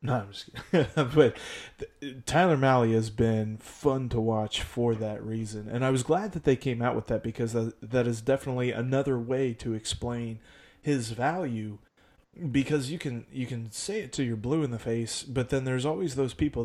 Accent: American